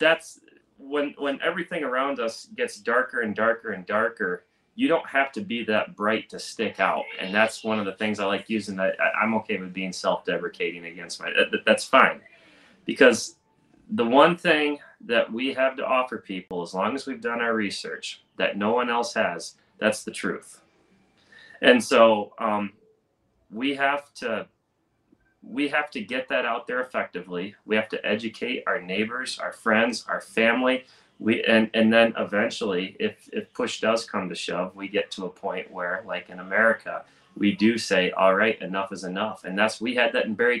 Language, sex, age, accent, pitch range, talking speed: English, male, 30-49, American, 100-125 Hz, 185 wpm